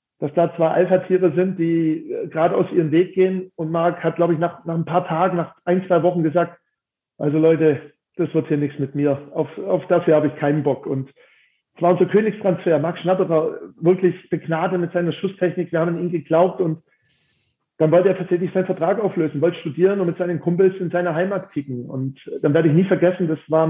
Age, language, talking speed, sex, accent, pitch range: 40-59, German, 215 wpm, male, German, 160-185 Hz